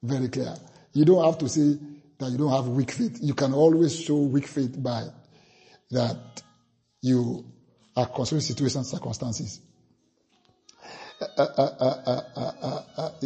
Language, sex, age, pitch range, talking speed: English, male, 50-69, 135-210 Hz, 130 wpm